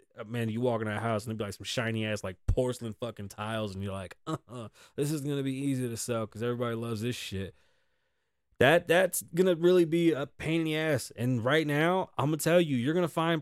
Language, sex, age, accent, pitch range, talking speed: English, male, 20-39, American, 110-150 Hz, 255 wpm